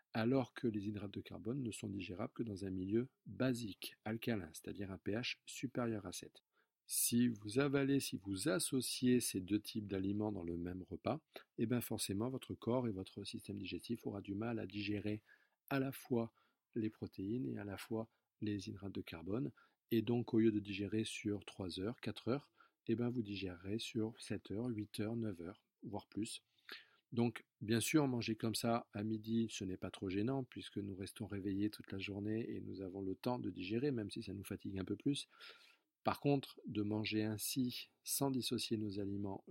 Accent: French